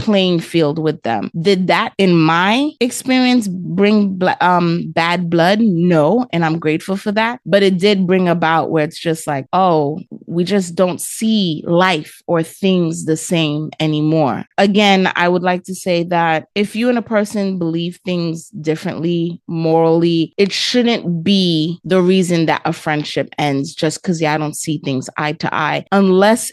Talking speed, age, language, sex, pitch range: 170 wpm, 30-49, English, female, 165-210 Hz